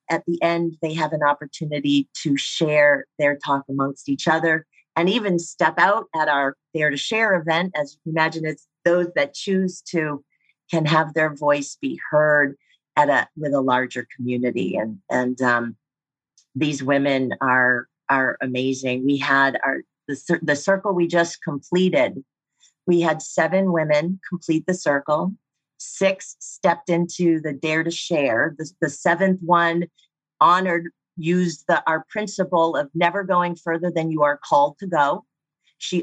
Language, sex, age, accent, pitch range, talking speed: English, female, 40-59, American, 145-175 Hz, 160 wpm